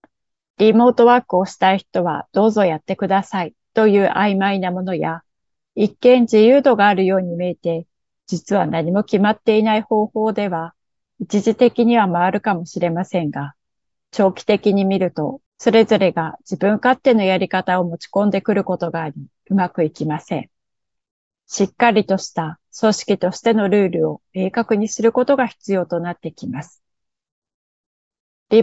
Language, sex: Japanese, female